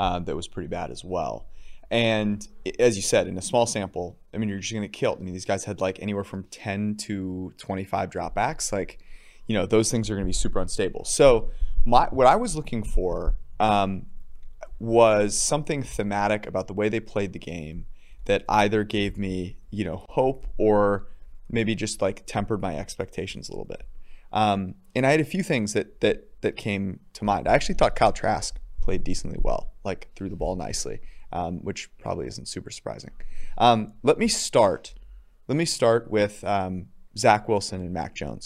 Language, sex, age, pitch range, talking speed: English, male, 30-49, 95-110 Hz, 195 wpm